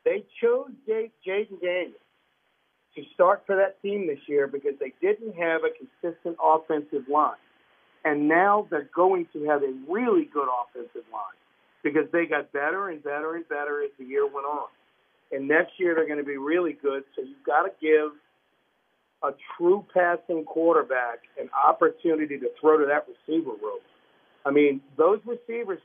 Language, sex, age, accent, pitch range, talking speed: English, male, 50-69, American, 150-210 Hz, 170 wpm